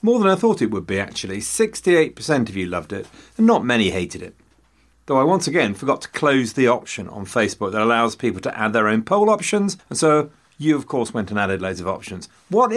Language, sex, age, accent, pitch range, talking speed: English, male, 40-59, British, 105-150 Hz, 235 wpm